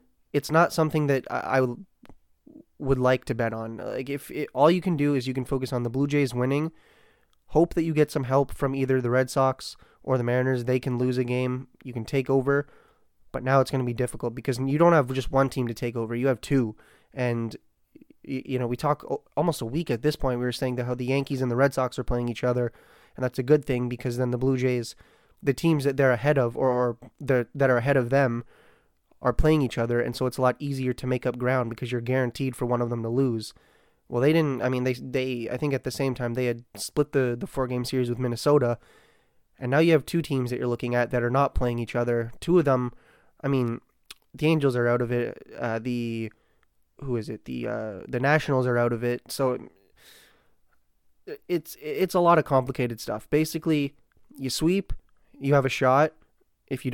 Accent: American